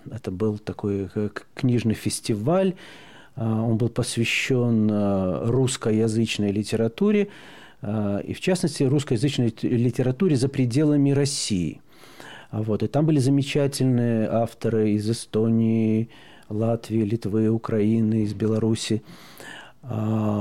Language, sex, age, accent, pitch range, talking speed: Russian, male, 40-59, native, 105-135 Hz, 90 wpm